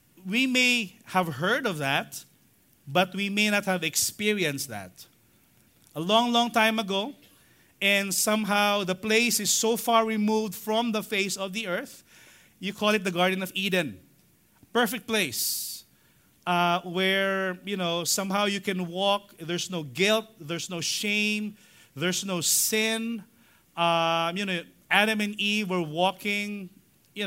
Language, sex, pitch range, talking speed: English, male, 175-225 Hz, 145 wpm